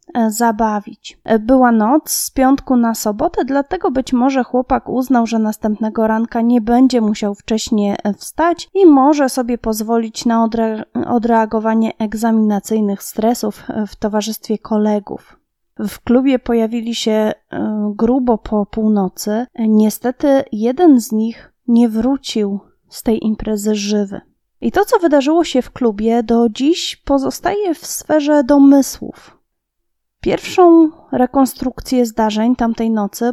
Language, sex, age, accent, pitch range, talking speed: Polish, female, 30-49, native, 225-265 Hz, 120 wpm